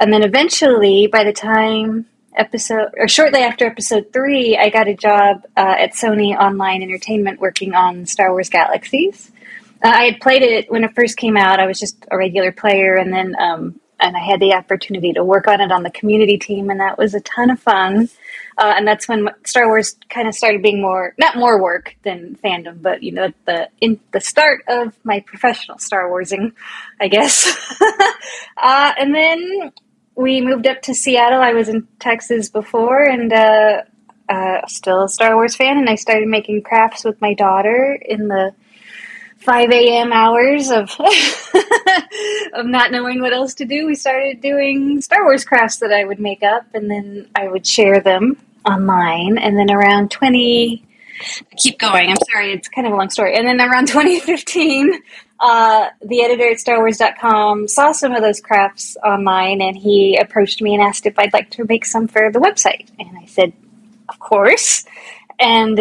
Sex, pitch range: female, 200-250 Hz